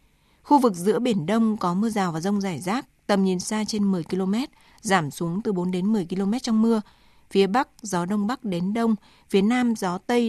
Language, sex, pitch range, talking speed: Vietnamese, female, 185-225 Hz, 220 wpm